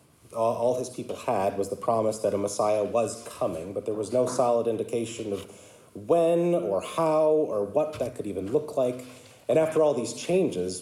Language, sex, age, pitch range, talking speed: English, male, 30-49, 105-145 Hz, 190 wpm